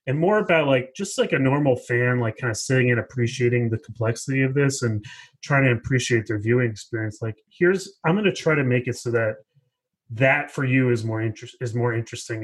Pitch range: 115-140 Hz